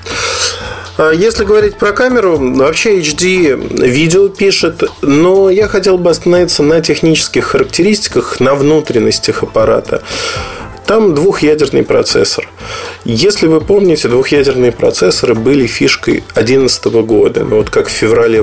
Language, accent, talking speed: Russian, native, 115 wpm